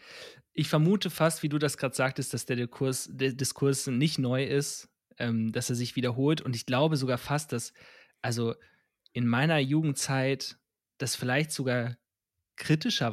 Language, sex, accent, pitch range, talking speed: German, male, German, 120-145 Hz, 160 wpm